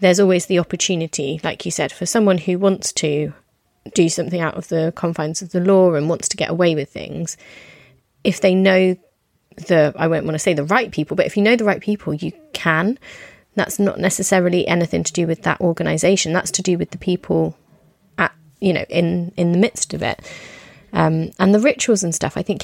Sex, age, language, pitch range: female, 20-39, English, 170-205 Hz